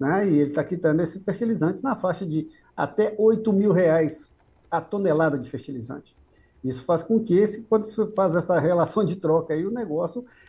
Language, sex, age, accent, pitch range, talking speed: Portuguese, male, 50-69, Brazilian, 160-195 Hz, 195 wpm